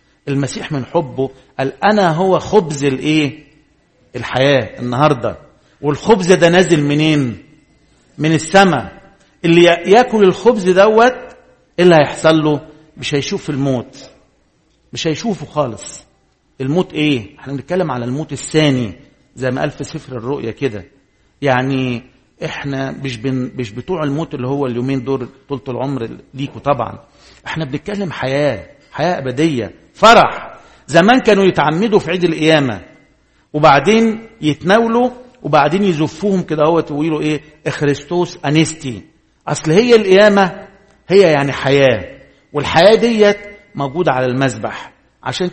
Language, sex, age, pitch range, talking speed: English, male, 50-69, 135-180 Hz, 115 wpm